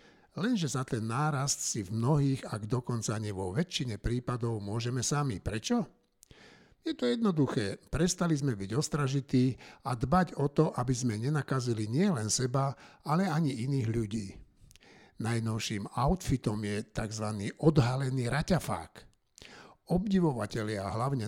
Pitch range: 115-155 Hz